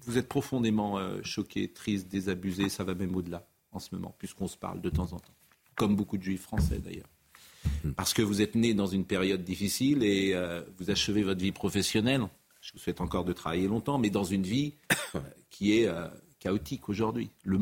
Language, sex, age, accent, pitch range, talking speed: French, male, 50-69, French, 90-105 Hz, 210 wpm